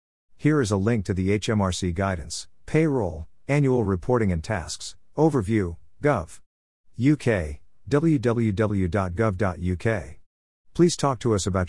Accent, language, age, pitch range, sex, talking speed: American, English, 50-69, 90-115 Hz, male, 110 wpm